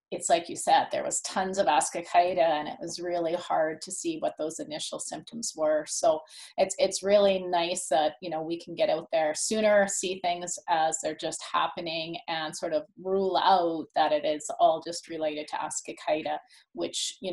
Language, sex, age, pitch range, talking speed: English, female, 30-49, 160-205 Hz, 195 wpm